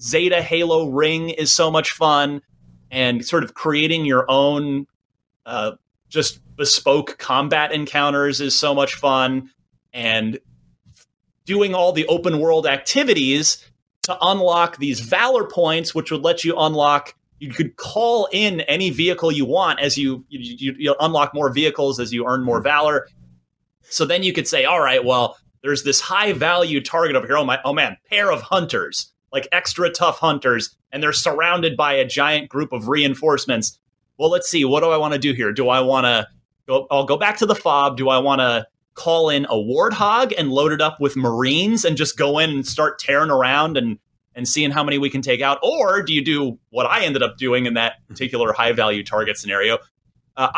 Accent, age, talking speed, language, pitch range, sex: American, 30-49, 190 wpm, English, 130-165 Hz, male